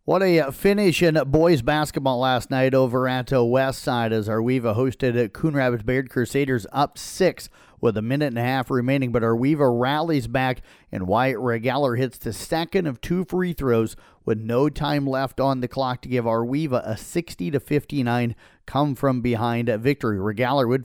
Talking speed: 175 wpm